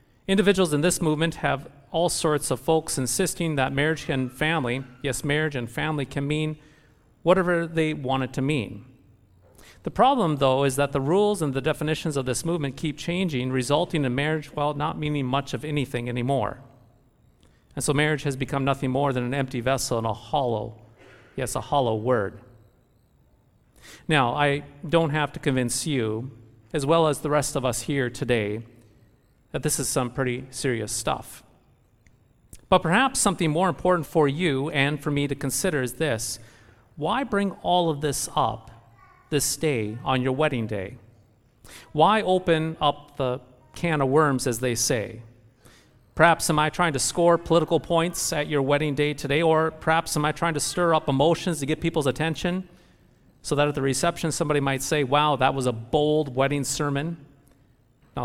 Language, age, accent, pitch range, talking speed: English, 40-59, American, 125-155 Hz, 175 wpm